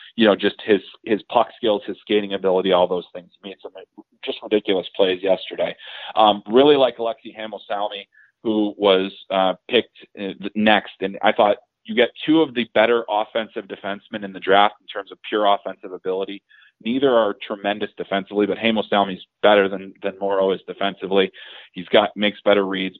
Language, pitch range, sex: English, 100-110 Hz, male